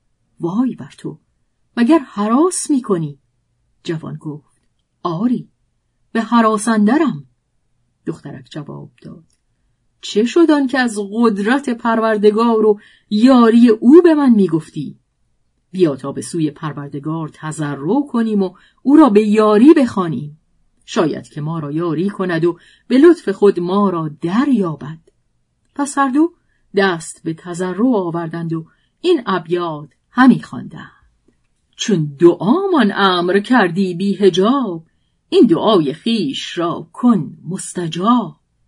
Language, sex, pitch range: Persian, female, 160-240 Hz